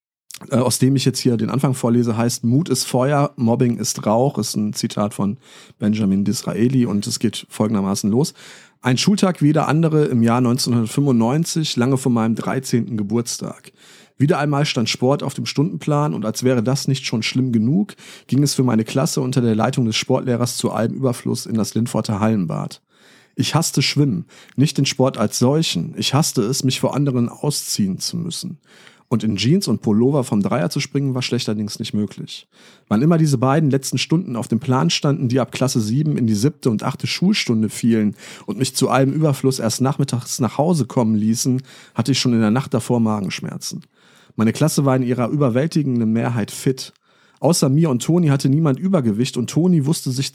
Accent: German